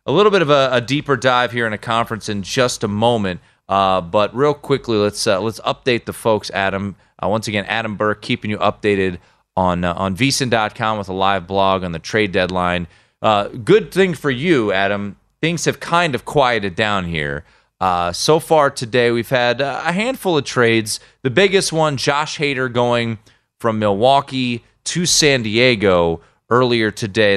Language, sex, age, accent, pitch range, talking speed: English, male, 30-49, American, 95-130 Hz, 180 wpm